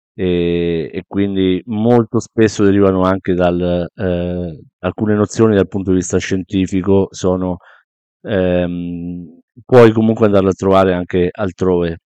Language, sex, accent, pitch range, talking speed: Italian, male, native, 95-115 Hz, 120 wpm